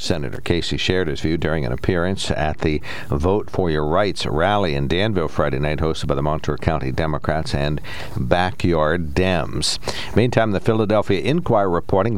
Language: English